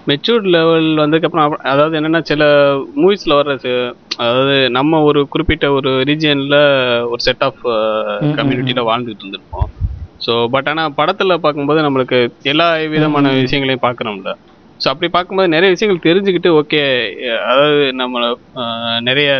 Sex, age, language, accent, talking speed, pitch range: male, 20-39, Tamil, native, 125 wpm, 115-145 Hz